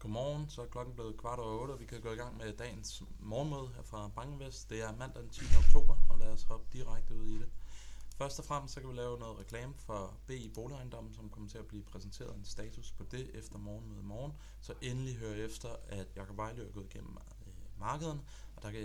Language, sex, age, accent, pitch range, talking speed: Danish, male, 20-39, native, 100-115 Hz, 240 wpm